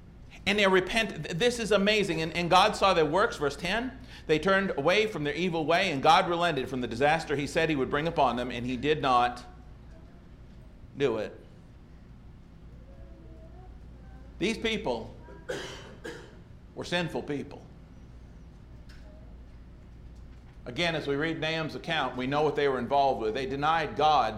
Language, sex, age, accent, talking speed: English, male, 50-69, American, 150 wpm